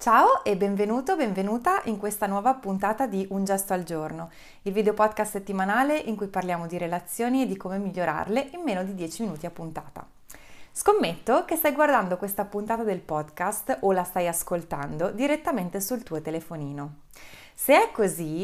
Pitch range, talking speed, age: 180-245 Hz, 170 wpm, 30-49